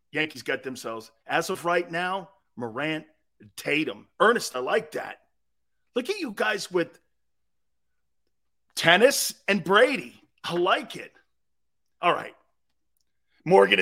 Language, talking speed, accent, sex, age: English, 115 wpm, American, male, 40-59